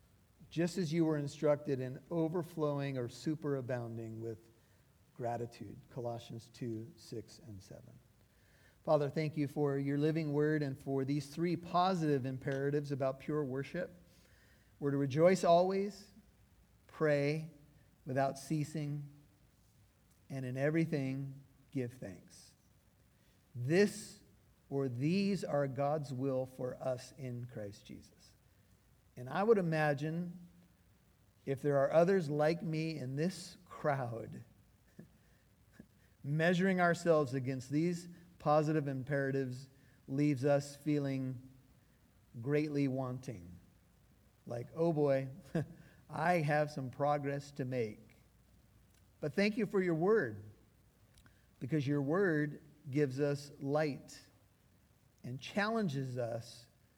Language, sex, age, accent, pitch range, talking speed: English, male, 50-69, American, 125-155 Hz, 110 wpm